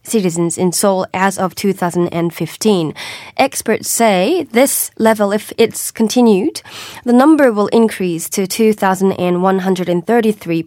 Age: 20-39